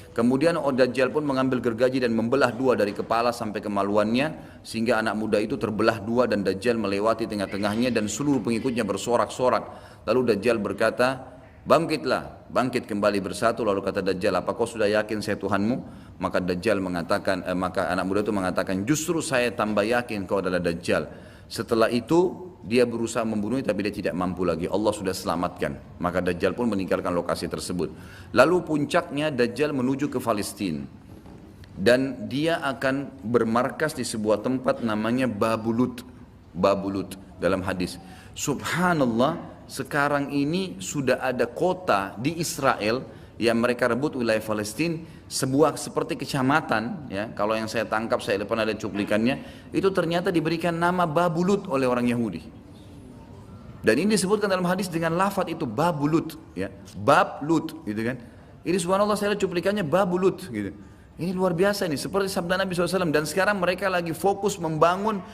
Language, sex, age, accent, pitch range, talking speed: Indonesian, male, 30-49, native, 105-160 Hz, 145 wpm